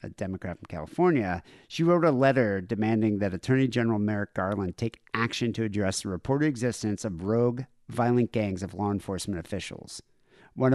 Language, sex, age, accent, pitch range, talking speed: English, male, 50-69, American, 105-135 Hz, 165 wpm